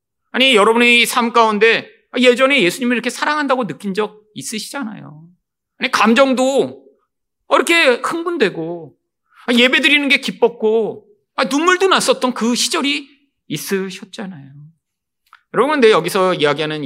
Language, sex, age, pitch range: Korean, male, 40-59, 195-310 Hz